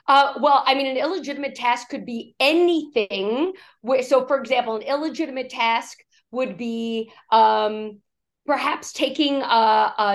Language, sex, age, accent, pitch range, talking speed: English, female, 40-59, American, 215-260 Hz, 135 wpm